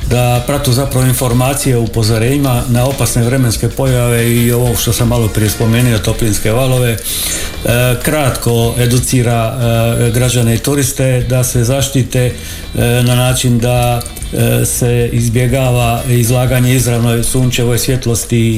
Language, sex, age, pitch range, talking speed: Croatian, male, 50-69, 115-130 Hz, 115 wpm